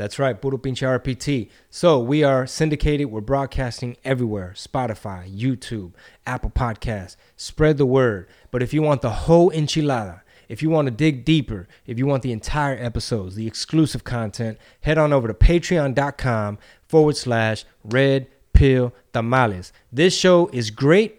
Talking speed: 155 wpm